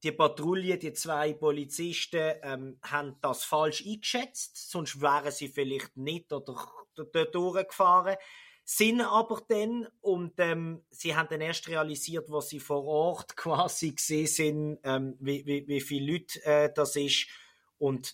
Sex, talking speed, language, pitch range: male, 145 wpm, German, 130-170 Hz